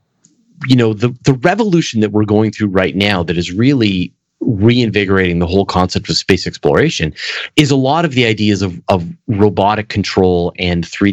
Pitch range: 95-115 Hz